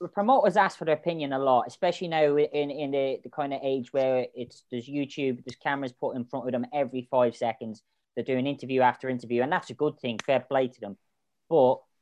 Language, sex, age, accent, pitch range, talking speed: English, female, 20-39, British, 130-170 Hz, 225 wpm